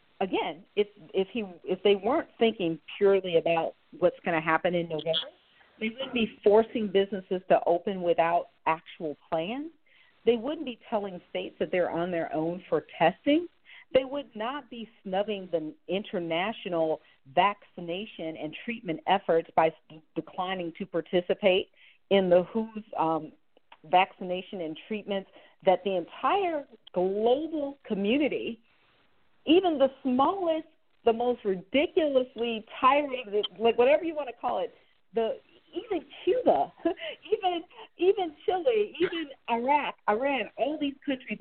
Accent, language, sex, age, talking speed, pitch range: American, English, female, 50-69, 135 wpm, 180-275 Hz